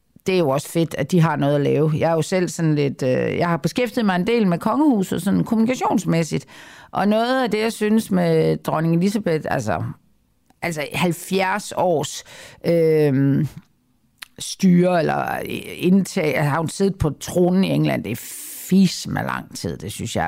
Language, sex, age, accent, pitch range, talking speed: Danish, female, 50-69, native, 150-195 Hz, 175 wpm